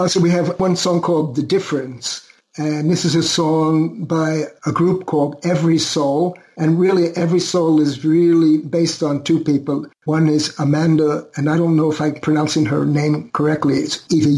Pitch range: 140-160 Hz